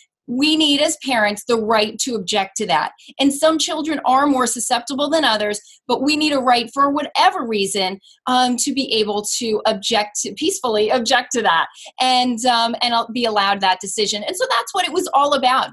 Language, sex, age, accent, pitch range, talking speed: English, female, 30-49, American, 225-280 Hz, 200 wpm